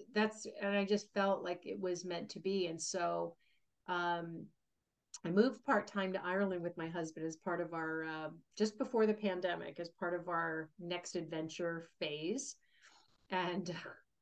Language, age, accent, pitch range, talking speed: English, 40-59, American, 170-205 Hz, 170 wpm